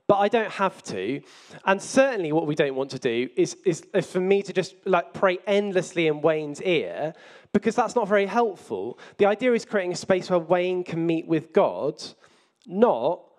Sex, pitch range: male, 150-195 Hz